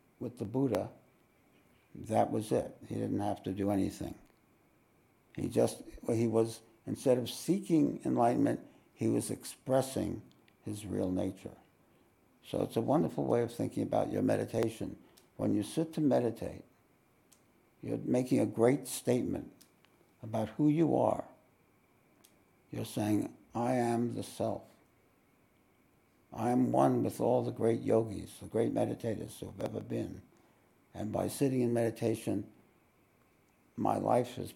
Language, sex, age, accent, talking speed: English, male, 60-79, American, 135 wpm